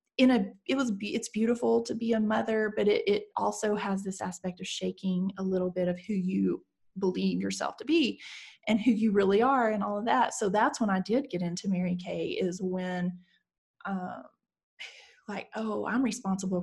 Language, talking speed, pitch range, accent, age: English, 195 wpm, 185-225 Hz, American, 30-49